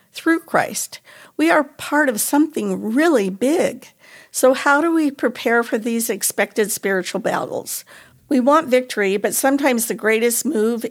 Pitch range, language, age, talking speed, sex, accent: 215-270 Hz, English, 50-69, 150 wpm, female, American